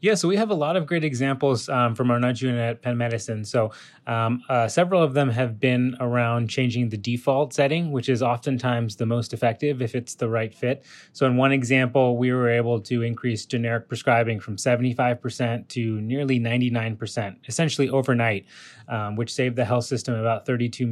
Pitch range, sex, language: 115-130 Hz, male, English